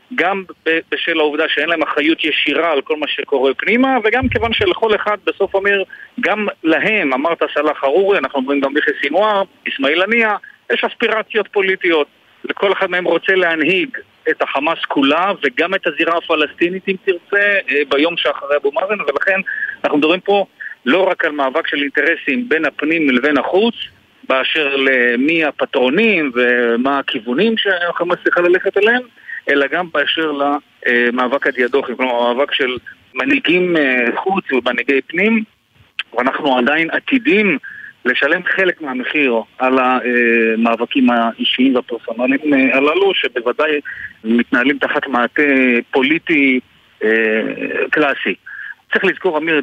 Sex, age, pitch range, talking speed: male, 40-59, 130-195 Hz, 130 wpm